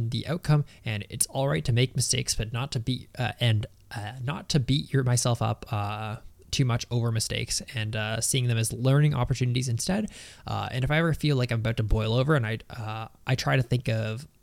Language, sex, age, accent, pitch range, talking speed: English, male, 20-39, American, 115-140 Hz, 230 wpm